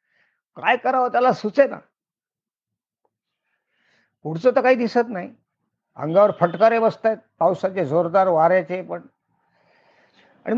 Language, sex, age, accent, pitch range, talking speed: Marathi, male, 50-69, native, 150-195 Hz, 100 wpm